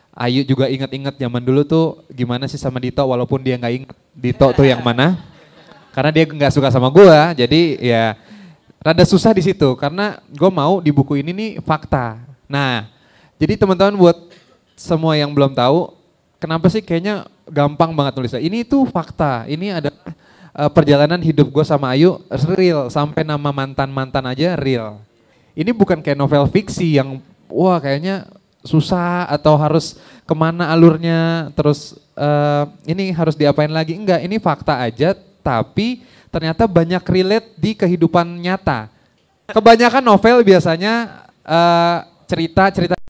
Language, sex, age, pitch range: Indonesian, male, 20-39, 140-190 Hz